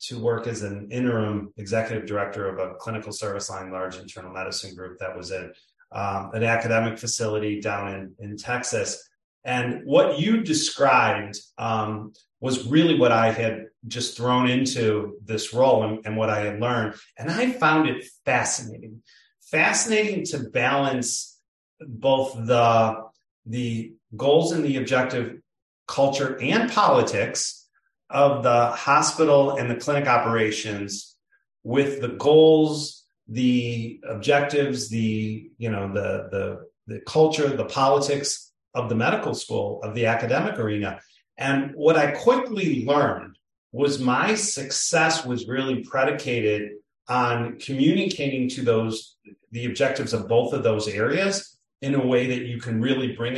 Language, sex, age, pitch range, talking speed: English, male, 30-49, 110-140 Hz, 140 wpm